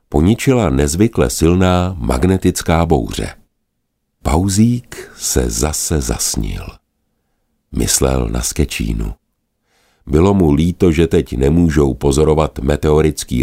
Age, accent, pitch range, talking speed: 50-69, native, 75-115 Hz, 90 wpm